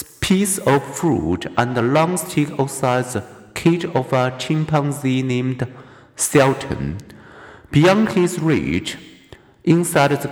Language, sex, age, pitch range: Chinese, male, 50-69, 125-165 Hz